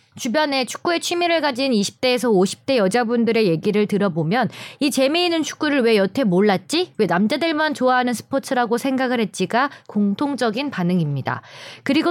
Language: Korean